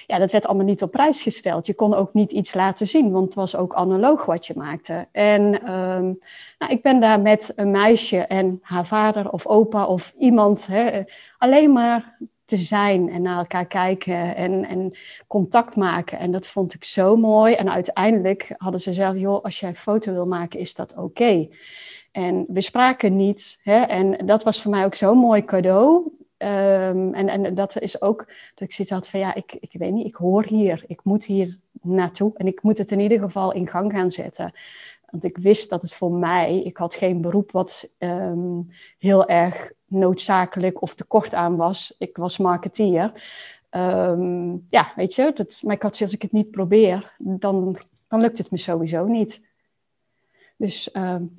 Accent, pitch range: Dutch, 185-215 Hz